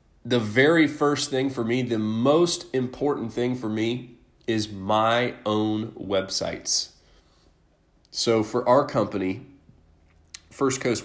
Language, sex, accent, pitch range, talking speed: English, male, American, 95-125 Hz, 120 wpm